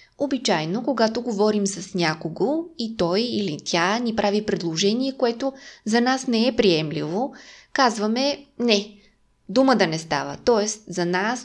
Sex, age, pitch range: female, 20-39, 180-245 Hz